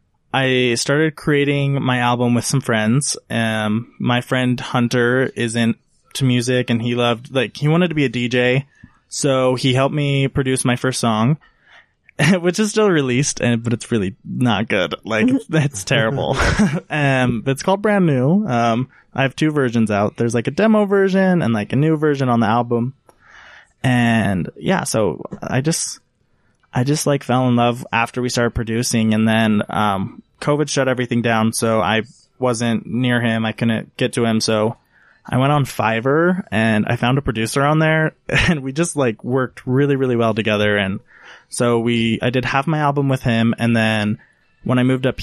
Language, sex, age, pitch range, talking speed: English, male, 20-39, 115-140 Hz, 185 wpm